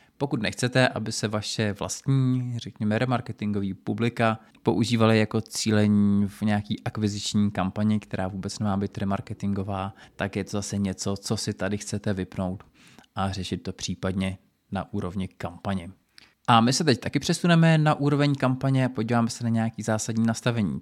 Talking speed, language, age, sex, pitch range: 155 wpm, Czech, 20-39, male, 100-115 Hz